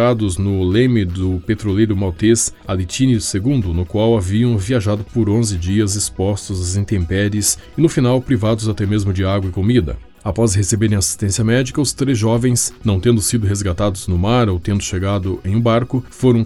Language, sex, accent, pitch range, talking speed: Portuguese, male, Brazilian, 95-115 Hz, 170 wpm